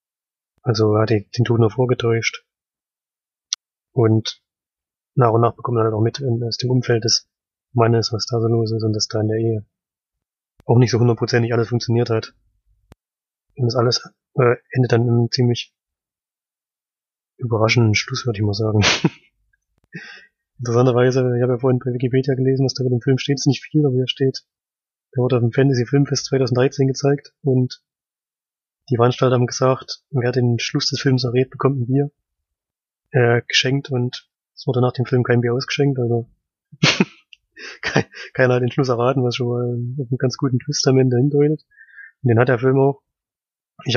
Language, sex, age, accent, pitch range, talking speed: German, male, 20-39, German, 115-130 Hz, 175 wpm